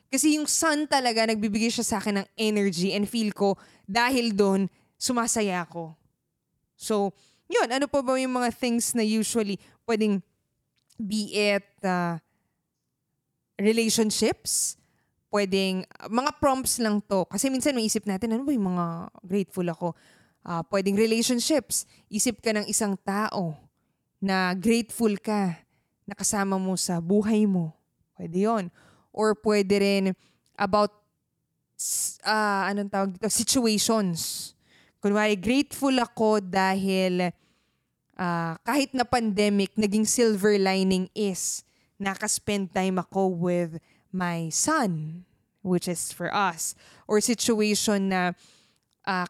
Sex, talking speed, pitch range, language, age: female, 125 wpm, 185-225 Hz, Filipino, 20-39